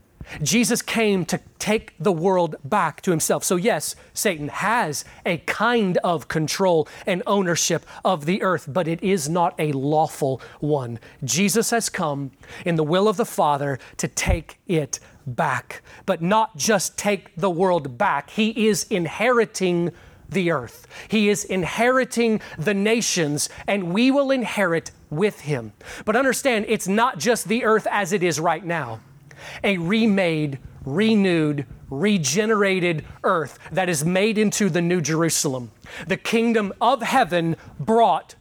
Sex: male